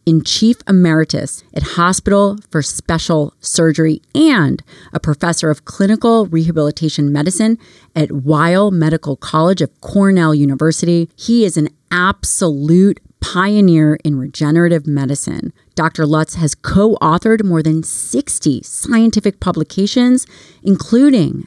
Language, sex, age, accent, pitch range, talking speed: English, female, 30-49, American, 150-195 Hz, 110 wpm